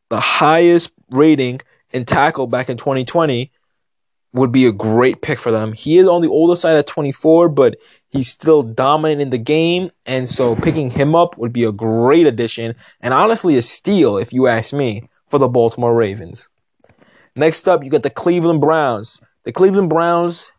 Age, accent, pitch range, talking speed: 20-39, American, 125-160 Hz, 180 wpm